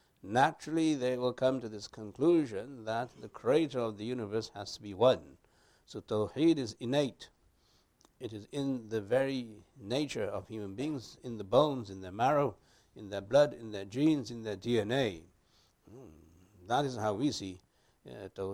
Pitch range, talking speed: 100-140 Hz, 170 wpm